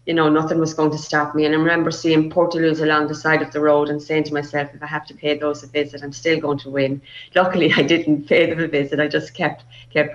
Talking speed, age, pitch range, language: 280 wpm, 30-49, 150-165 Hz, English